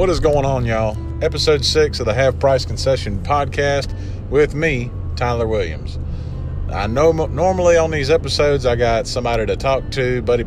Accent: American